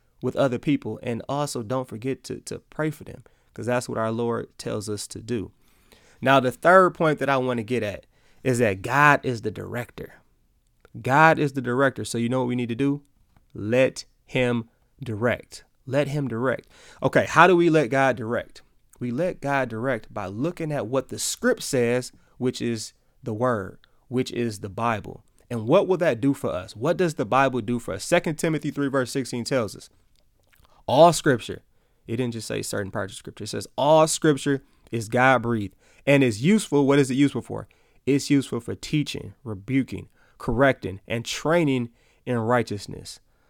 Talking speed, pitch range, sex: 190 wpm, 115-140 Hz, male